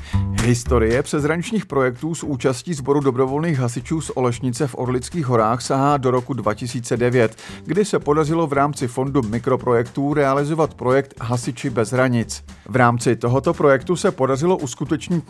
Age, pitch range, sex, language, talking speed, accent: 50-69, 120-150 Hz, male, Czech, 140 wpm, native